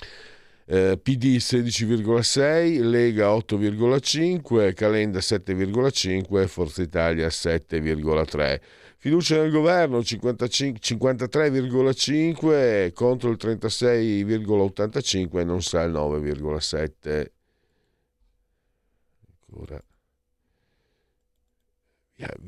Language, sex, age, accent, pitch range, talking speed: Italian, male, 50-69, native, 90-140 Hz, 60 wpm